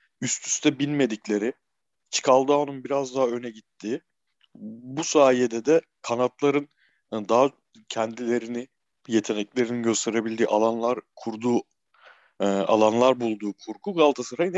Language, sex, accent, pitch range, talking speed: Turkish, male, native, 115-145 Hz, 100 wpm